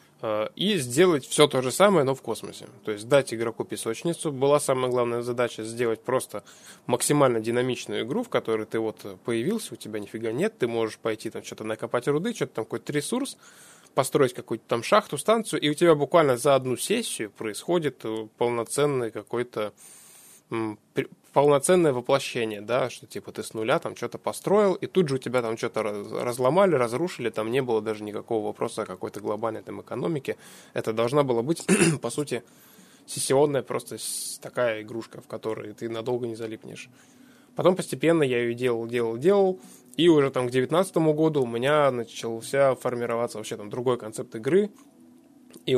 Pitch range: 115-165 Hz